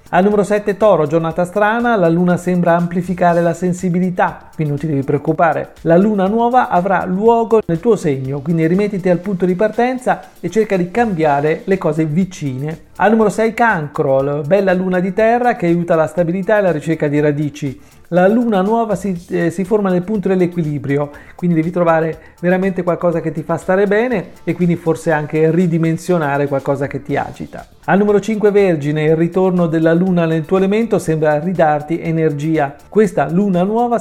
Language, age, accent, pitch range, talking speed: Italian, 40-59, native, 155-200 Hz, 180 wpm